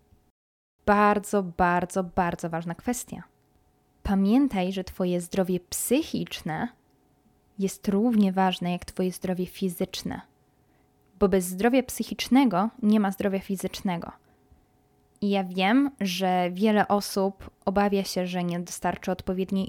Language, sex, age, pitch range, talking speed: Polish, female, 20-39, 190-235 Hz, 115 wpm